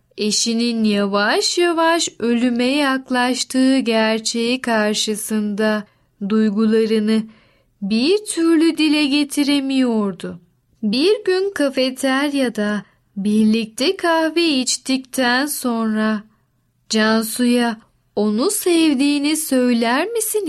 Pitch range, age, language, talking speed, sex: 215-285 Hz, 10-29, Turkish, 70 wpm, female